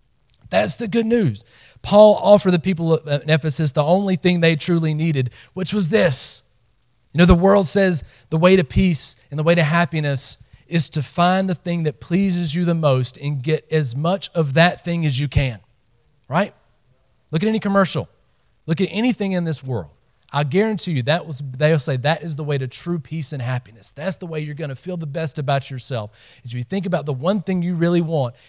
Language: English